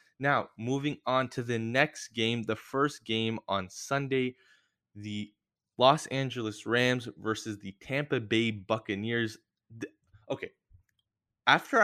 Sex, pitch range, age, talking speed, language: male, 105-135 Hz, 20-39, 115 wpm, English